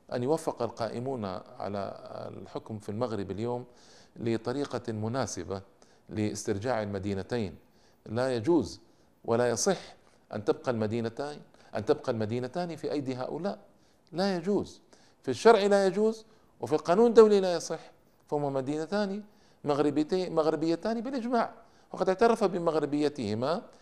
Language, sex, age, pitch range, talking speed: Arabic, male, 50-69, 110-160 Hz, 110 wpm